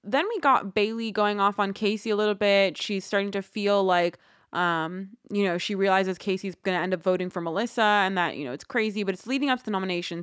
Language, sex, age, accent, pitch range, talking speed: English, female, 20-39, American, 180-210 Hz, 245 wpm